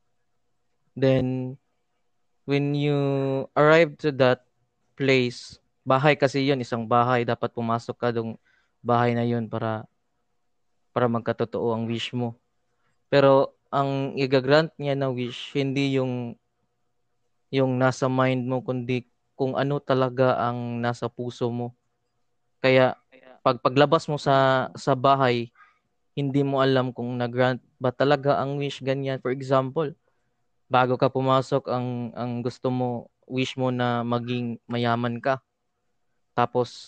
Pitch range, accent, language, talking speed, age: 120-135 Hz, native, Filipino, 125 wpm, 20-39